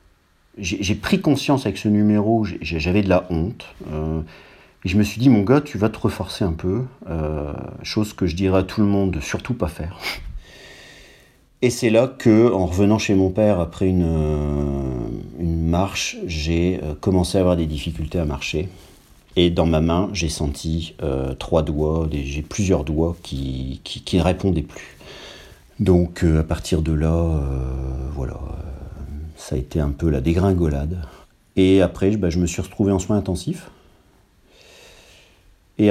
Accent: French